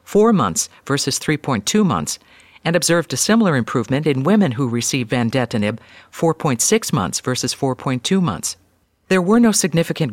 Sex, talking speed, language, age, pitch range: female, 140 wpm, English, 50-69, 125-170 Hz